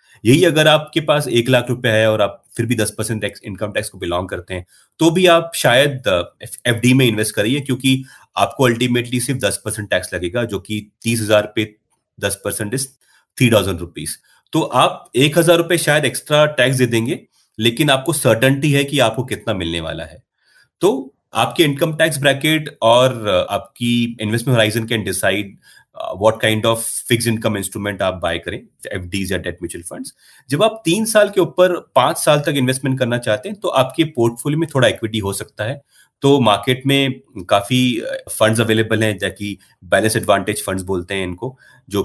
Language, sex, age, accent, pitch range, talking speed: Hindi, male, 30-49, native, 105-135 Hz, 165 wpm